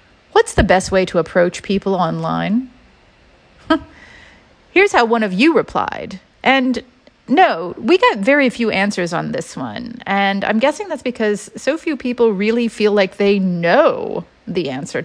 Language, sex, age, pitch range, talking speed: English, female, 40-59, 185-245 Hz, 155 wpm